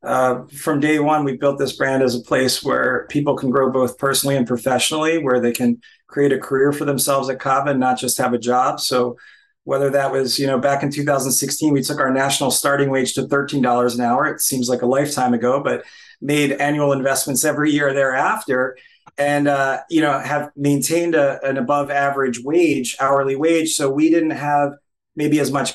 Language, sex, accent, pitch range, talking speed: English, male, American, 135-145 Hz, 205 wpm